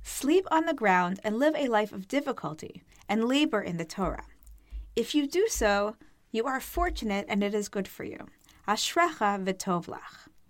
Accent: American